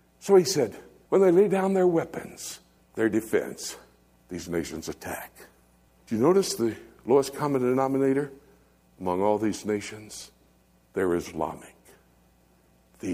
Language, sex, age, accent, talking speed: English, male, 60-79, American, 130 wpm